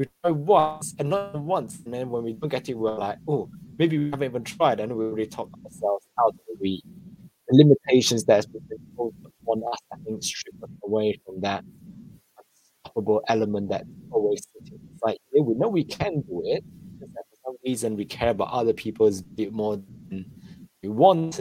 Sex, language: male, English